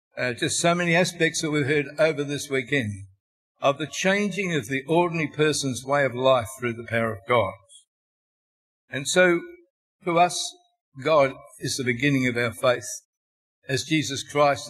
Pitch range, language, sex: 130-175 Hz, English, male